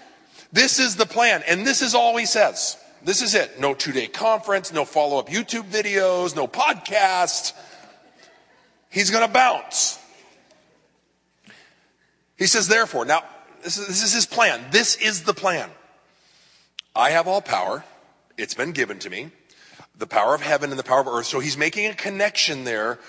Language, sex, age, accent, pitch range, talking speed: English, male, 40-59, American, 145-215 Hz, 165 wpm